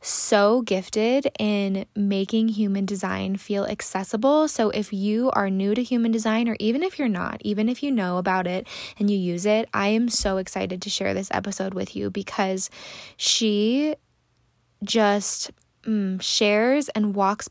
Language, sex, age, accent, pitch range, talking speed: English, female, 10-29, American, 195-230 Hz, 165 wpm